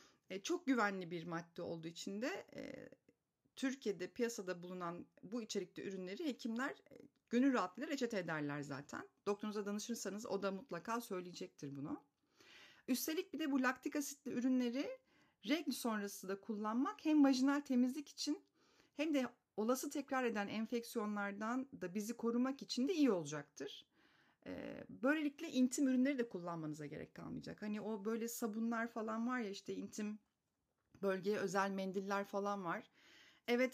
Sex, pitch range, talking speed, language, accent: female, 185-255 Hz, 135 wpm, Turkish, native